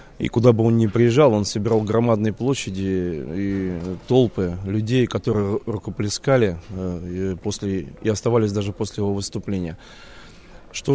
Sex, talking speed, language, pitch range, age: male, 125 wpm, Russian, 100-115 Hz, 20-39